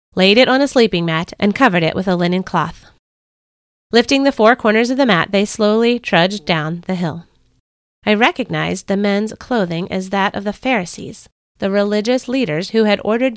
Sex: female